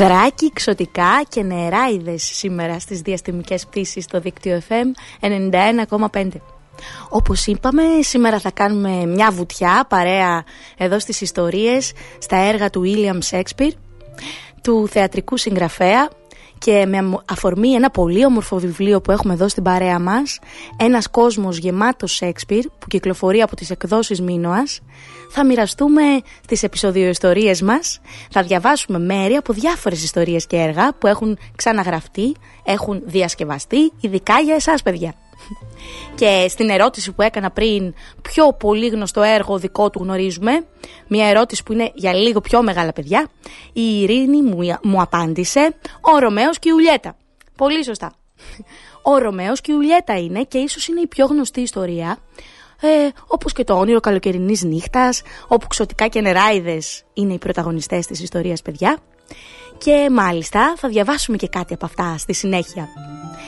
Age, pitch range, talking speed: 20-39, 185-245 Hz, 140 wpm